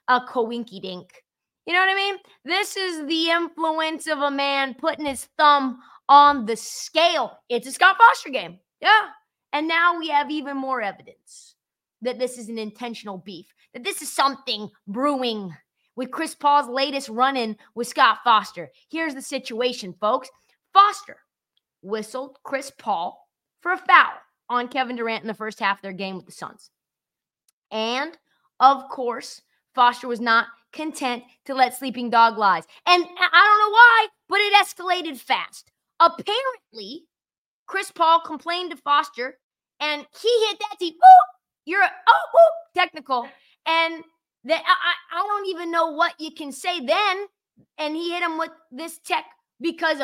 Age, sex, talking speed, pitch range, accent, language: 20-39, female, 160 wpm, 250-355 Hz, American, English